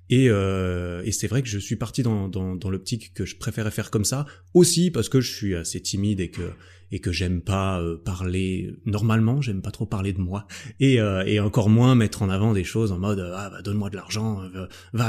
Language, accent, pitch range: French, French, 90-115 Hz